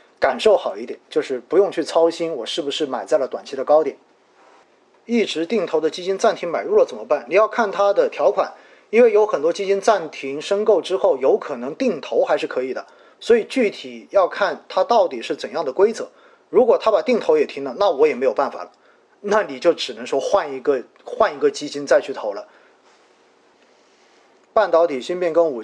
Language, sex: Chinese, male